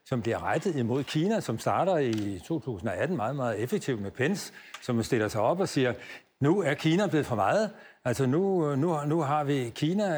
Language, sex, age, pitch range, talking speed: Danish, male, 60-79, 115-155 Hz, 195 wpm